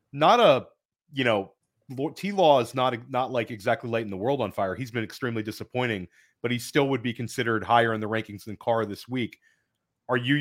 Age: 30-49